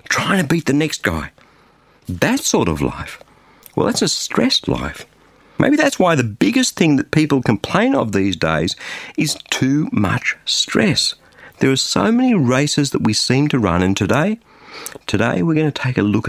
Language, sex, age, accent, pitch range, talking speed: English, male, 50-69, Australian, 110-160 Hz, 185 wpm